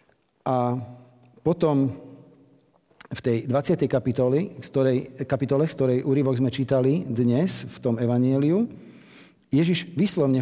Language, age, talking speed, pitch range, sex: Slovak, 50-69, 100 wpm, 125-150 Hz, male